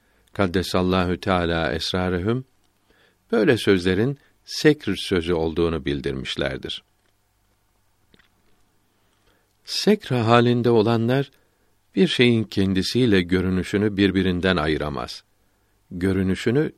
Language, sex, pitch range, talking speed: Turkish, male, 95-115 Hz, 70 wpm